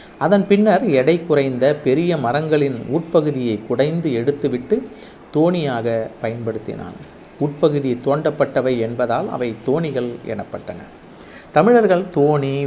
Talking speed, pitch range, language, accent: 90 wpm, 120-160 Hz, Tamil, native